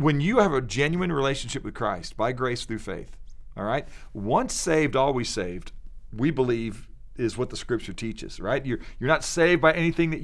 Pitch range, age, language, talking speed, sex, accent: 115-155 Hz, 40-59, English, 195 wpm, male, American